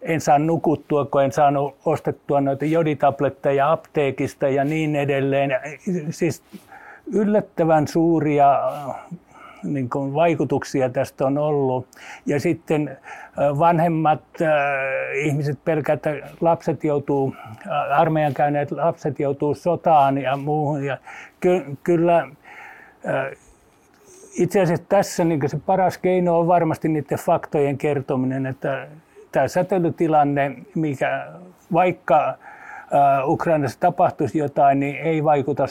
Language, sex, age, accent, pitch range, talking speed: Finnish, male, 60-79, native, 140-165 Hz, 95 wpm